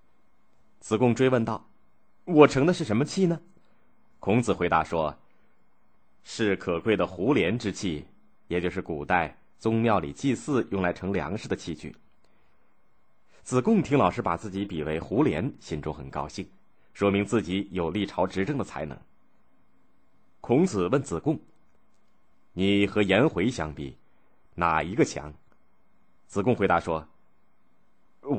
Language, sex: Chinese, male